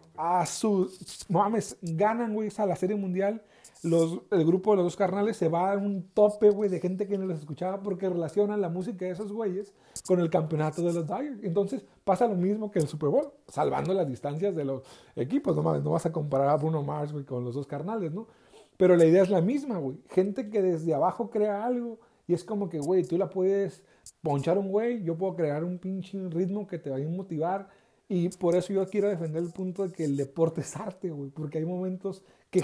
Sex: male